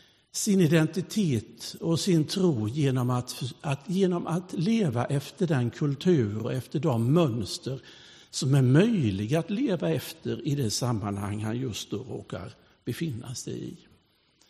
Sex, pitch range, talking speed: male, 115-155 Hz, 135 wpm